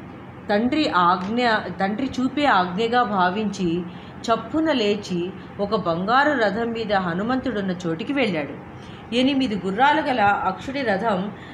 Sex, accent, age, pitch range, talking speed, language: female, native, 30-49, 190-255 Hz, 110 wpm, Telugu